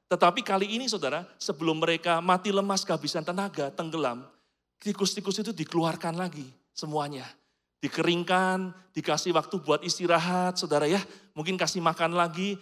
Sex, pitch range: male, 150-200 Hz